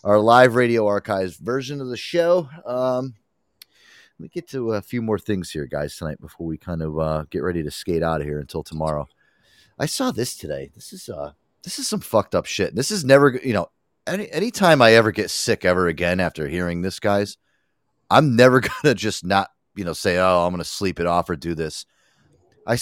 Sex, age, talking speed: male, 30-49, 220 wpm